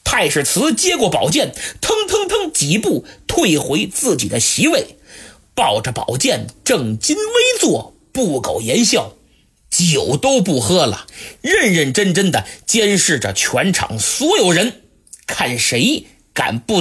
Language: Chinese